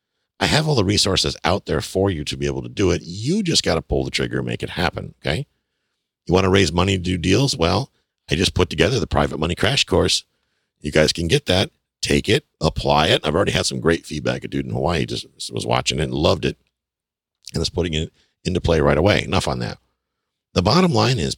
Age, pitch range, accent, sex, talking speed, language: 50-69, 75-100 Hz, American, male, 240 wpm, English